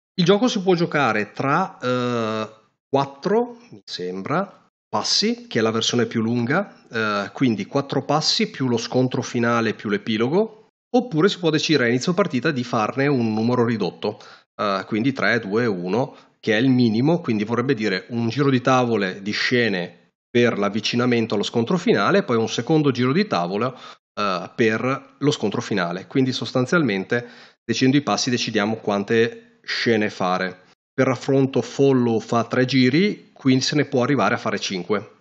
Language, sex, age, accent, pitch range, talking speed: Italian, male, 30-49, native, 115-150 Hz, 165 wpm